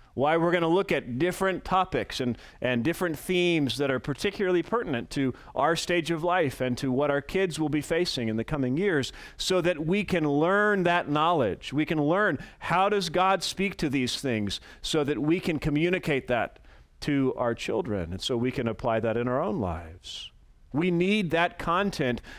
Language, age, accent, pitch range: English, 40-59, American, 130-180 Hz